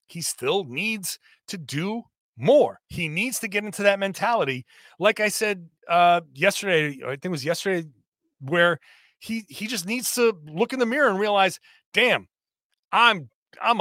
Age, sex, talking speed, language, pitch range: 30-49, male, 165 wpm, English, 175-235 Hz